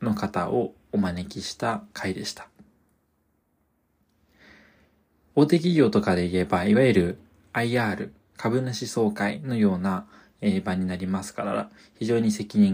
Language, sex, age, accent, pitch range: Japanese, male, 20-39, native, 90-115 Hz